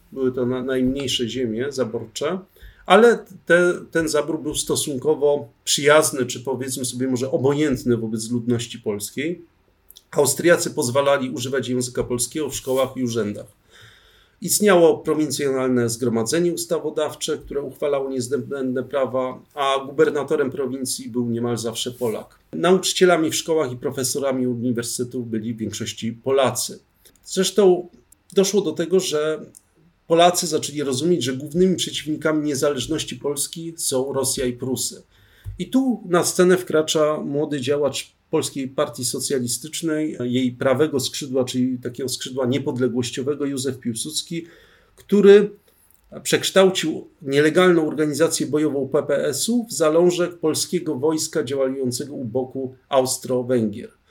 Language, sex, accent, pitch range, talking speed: Polish, male, native, 125-160 Hz, 115 wpm